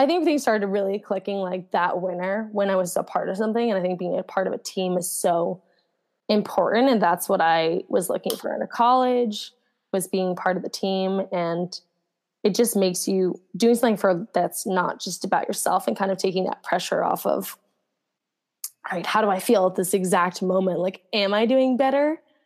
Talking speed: 215 wpm